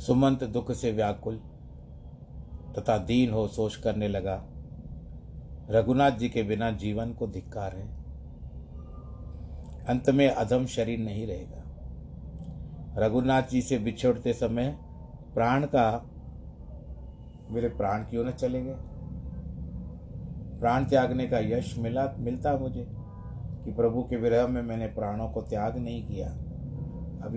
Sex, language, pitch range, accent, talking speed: male, Hindi, 75-125 Hz, native, 120 wpm